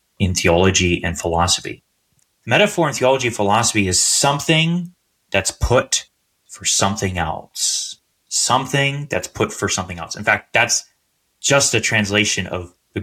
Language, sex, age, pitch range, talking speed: English, male, 30-49, 95-130 Hz, 140 wpm